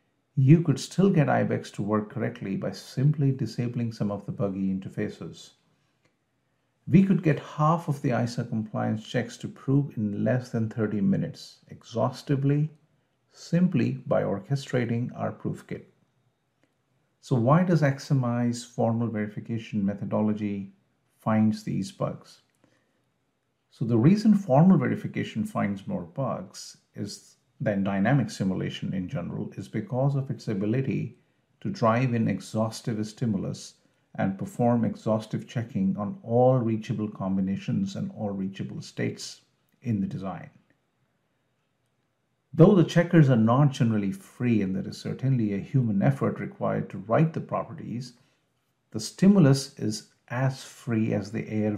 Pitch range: 110-140 Hz